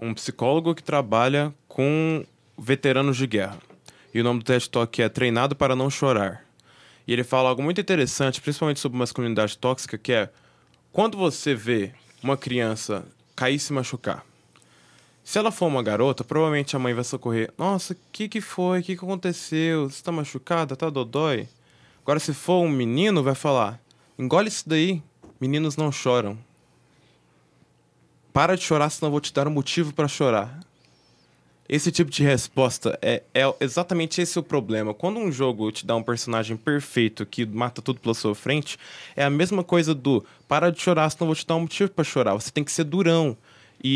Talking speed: 185 wpm